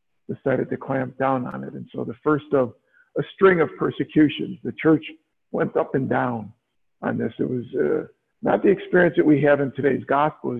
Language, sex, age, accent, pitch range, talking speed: English, male, 50-69, American, 125-160 Hz, 200 wpm